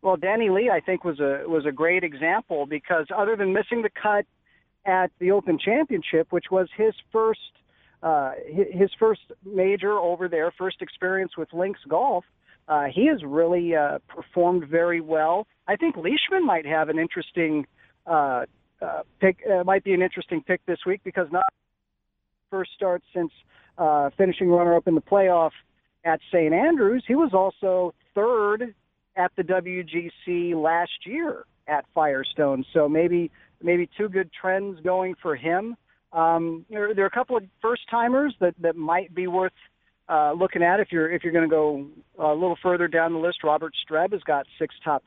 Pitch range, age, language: 155-190 Hz, 50-69, English